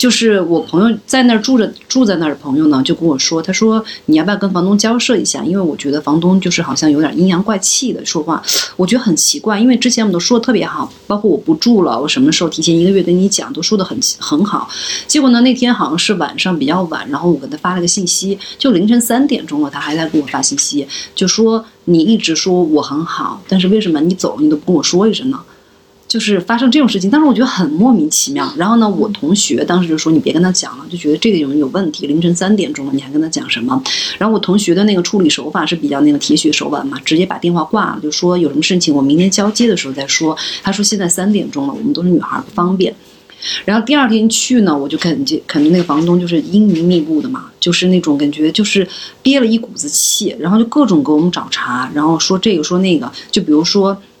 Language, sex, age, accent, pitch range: Chinese, female, 30-49, native, 170-245 Hz